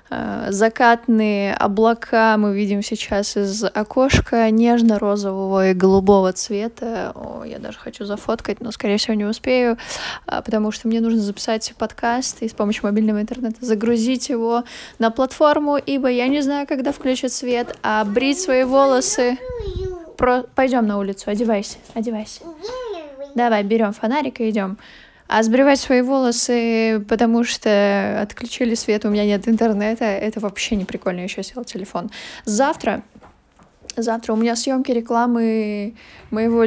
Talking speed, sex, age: 140 wpm, female, 20-39